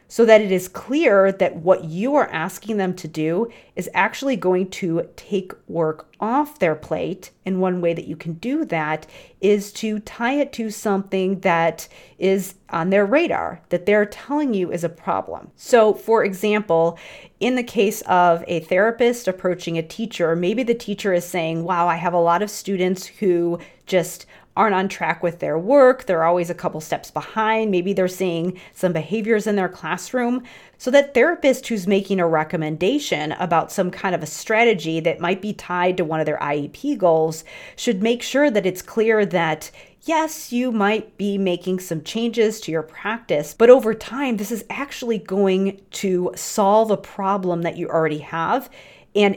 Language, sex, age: English, female, 30-49